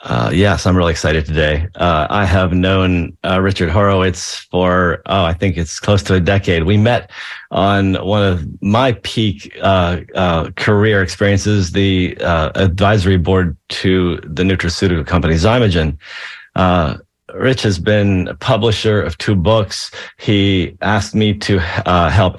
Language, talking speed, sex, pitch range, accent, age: English, 155 wpm, male, 90-110 Hz, American, 40-59